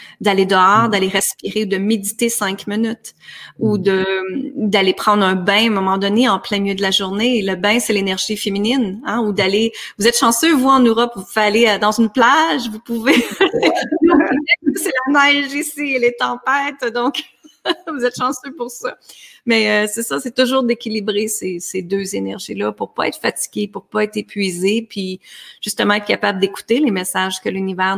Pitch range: 195-235 Hz